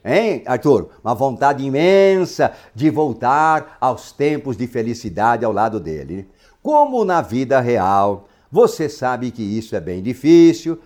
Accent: Brazilian